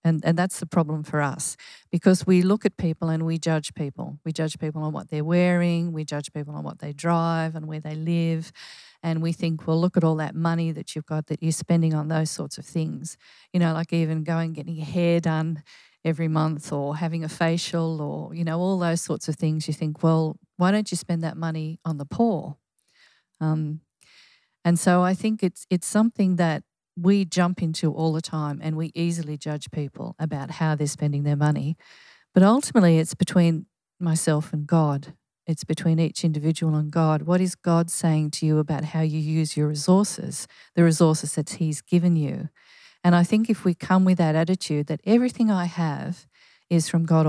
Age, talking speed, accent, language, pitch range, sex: 40-59, 205 wpm, Australian, English, 155-175 Hz, female